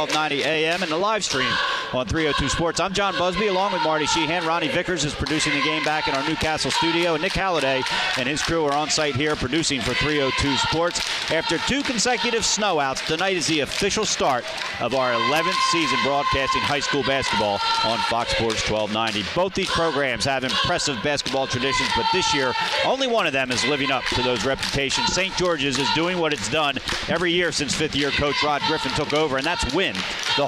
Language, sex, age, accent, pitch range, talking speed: English, male, 40-59, American, 130-175 Hz, 205 wpm